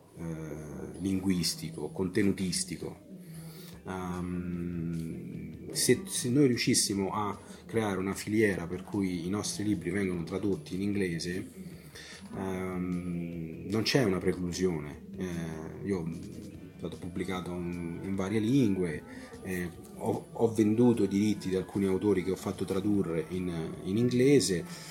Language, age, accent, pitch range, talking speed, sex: Italian, 30-49, native, 95-110 Hz, 110 wpm, male